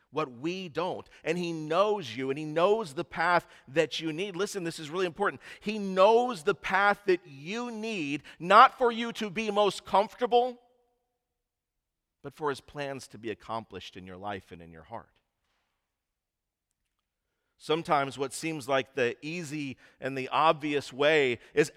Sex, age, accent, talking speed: male, 50-69, American, 165 wpm